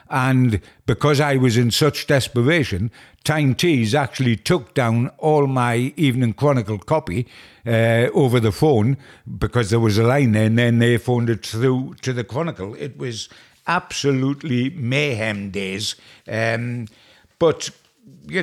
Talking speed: 145 wpm